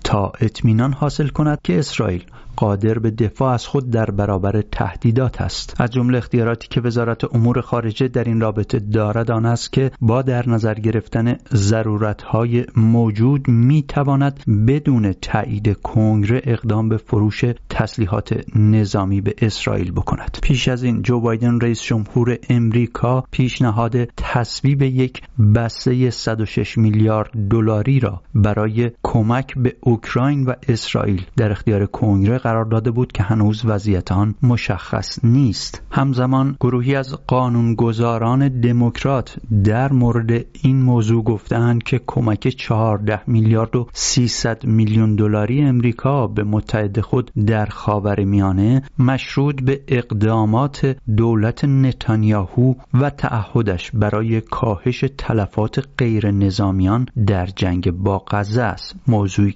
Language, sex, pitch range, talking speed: English, male, 110-125 Hz, 125 wpm